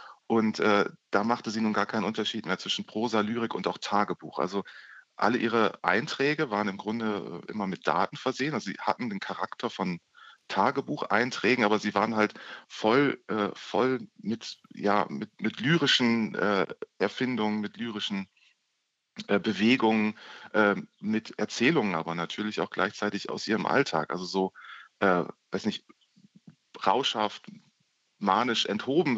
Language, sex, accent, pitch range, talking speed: German, male, German, 105-120 Hz, 145 wpm